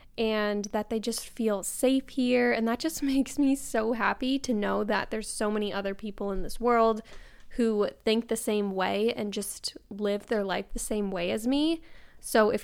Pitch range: 205-245 Hz